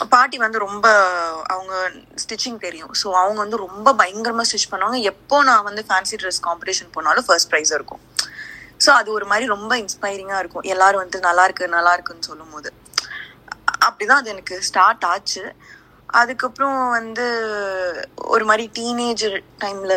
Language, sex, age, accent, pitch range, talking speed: Tamil, female, 20-39, native, 180-220 Hz, 85 wpm